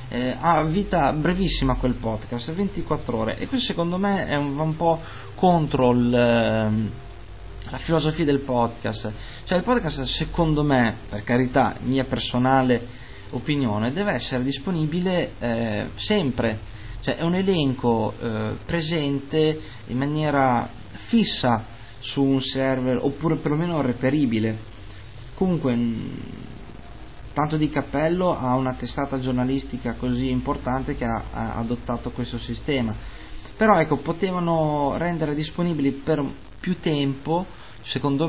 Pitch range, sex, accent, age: 115-155 Hz, male, native, 20-39